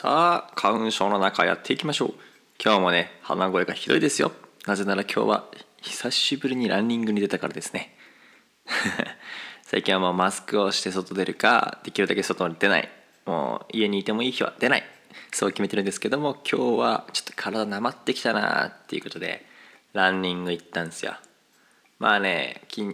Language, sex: Japanese, male